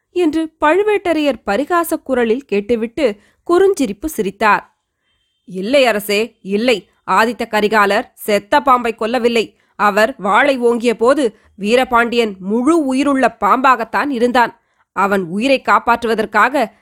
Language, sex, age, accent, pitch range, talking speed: Tamil, female, 20-39, native, 215-280 Hz, 95 wpm